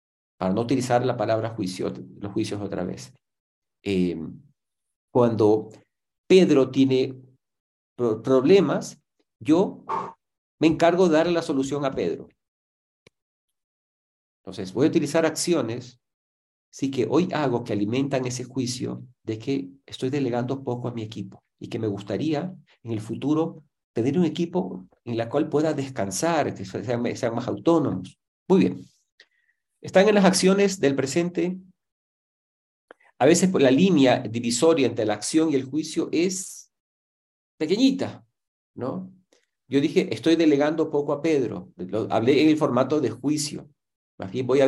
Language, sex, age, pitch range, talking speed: Spanish, male, 50-69, 110-155 Hz, 140 wpm